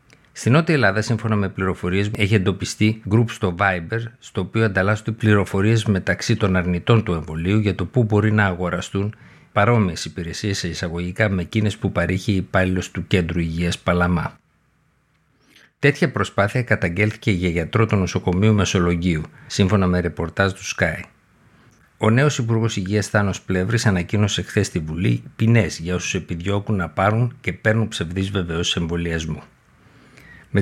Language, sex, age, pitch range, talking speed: Greek, male, 50-69, 90-110 Hz, 175 wpm